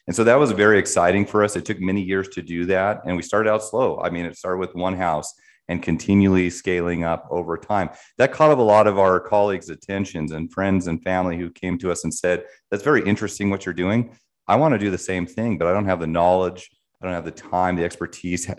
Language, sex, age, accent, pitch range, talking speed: English, male, 30-49, American, 85-100 Hz, 250 wpm